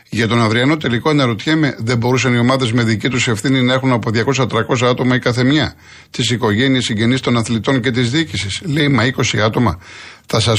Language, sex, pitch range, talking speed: Greek, male, 105-150 Hz, 200 wpm